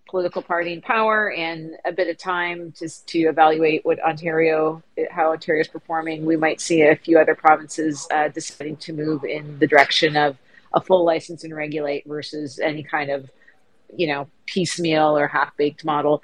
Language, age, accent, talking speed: English, 40-59, American, 175 wpm